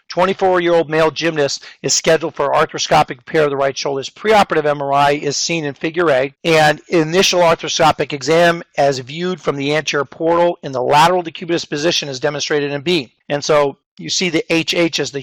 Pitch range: 140-165 Hz